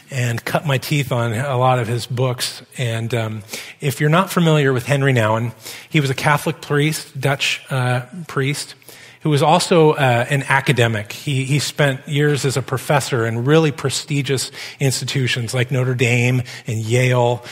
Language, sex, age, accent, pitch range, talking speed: English, male, 40-59, American, 125-150 Hz, 170 wpm